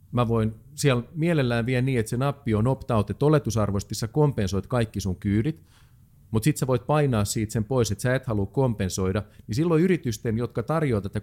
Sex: male